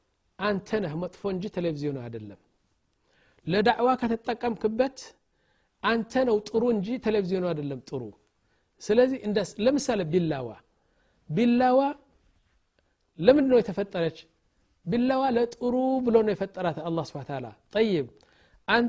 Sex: male